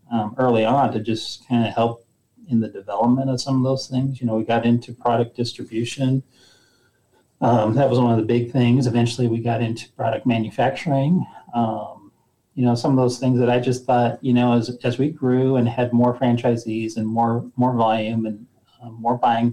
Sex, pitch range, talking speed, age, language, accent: male, 115-125 Hz, 205 wpm, 30-49, English, American